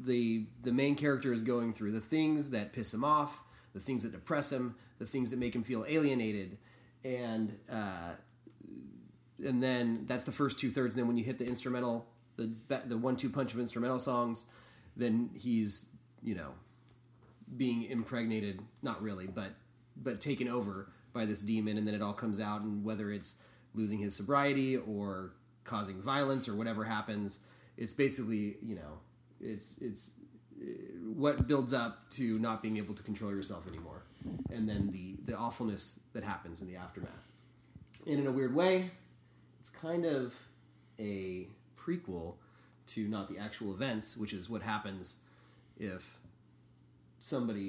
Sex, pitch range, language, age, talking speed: male, 100-125 Hz, English, 30-49, 165 wpm